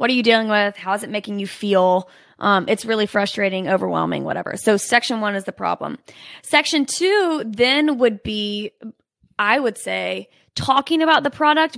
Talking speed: 180 wpm